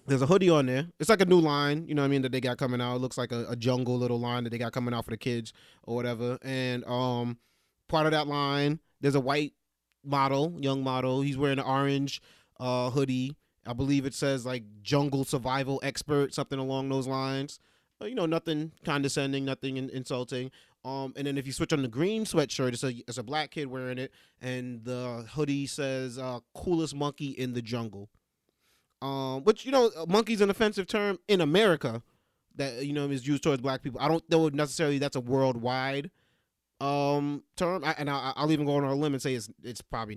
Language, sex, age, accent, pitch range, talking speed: English, male, 30-49, American, 125-145 Hz, 210 wpm